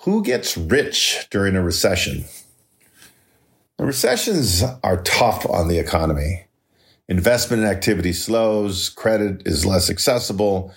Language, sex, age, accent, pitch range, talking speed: English, male, 50-69, American, 90-115 Hz, 105 wpm